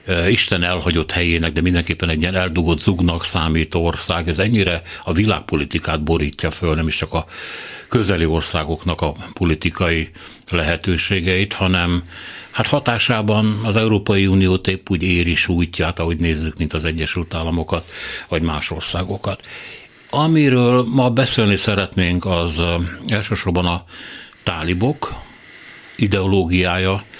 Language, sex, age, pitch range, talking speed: Hungarian, male, 60-79, 85-100 Hz, 120 wpm